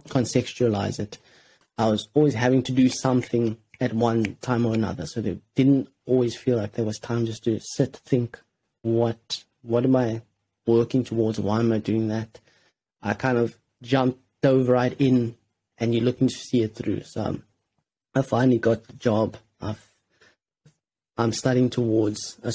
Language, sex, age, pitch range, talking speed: English, male, 30-49, 110-125 Hz, 170 wpm